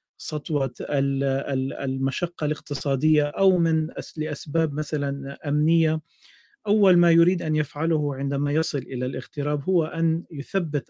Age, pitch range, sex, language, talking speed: 40-59, 130-155 Hz, male, English, 110 wpm